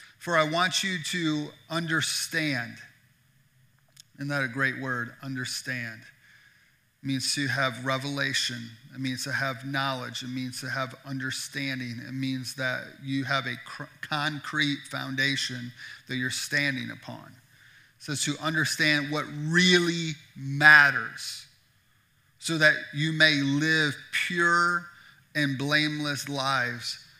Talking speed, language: 125 wpm, English